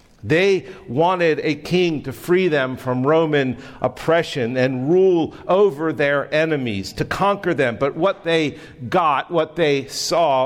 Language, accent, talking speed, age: English, American, 145 wpm, 50-69